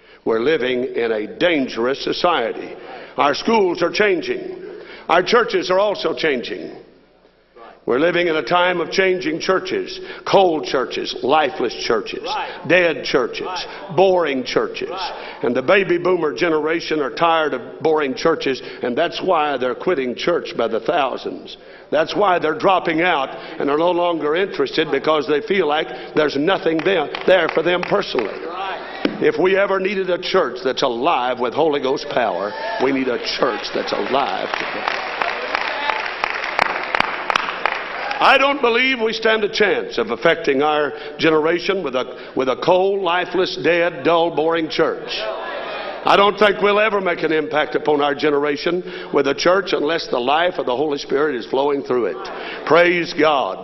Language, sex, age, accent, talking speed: English, male, 50-69, American, 150 wpm